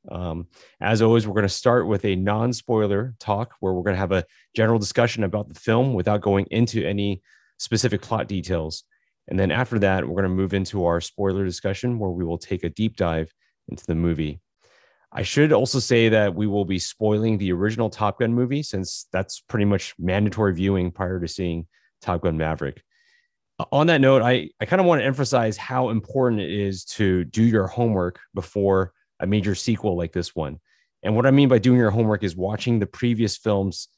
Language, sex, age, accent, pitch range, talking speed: English, male, 30-49, American, 95-115 Hz, 205 wpm